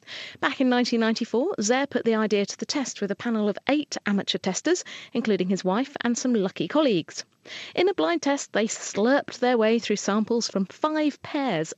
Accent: British